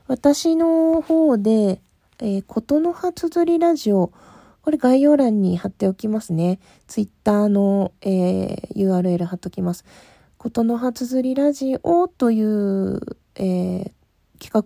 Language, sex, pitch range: Japanese, female, 195-295 Hz